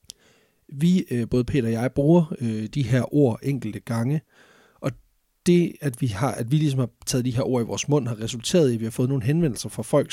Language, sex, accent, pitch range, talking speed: Danish, male, native, 115-140 Hz, 225 wpm